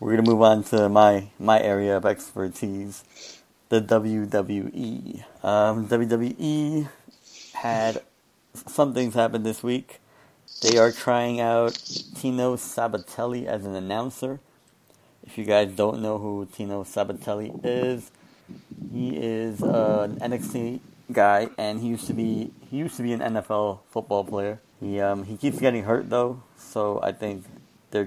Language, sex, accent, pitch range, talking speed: English, male, American, 100-115 Hz, 145 wpm